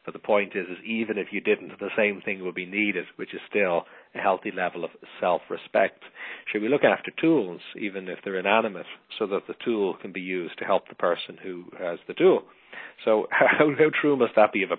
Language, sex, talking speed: English, male, 225 wpm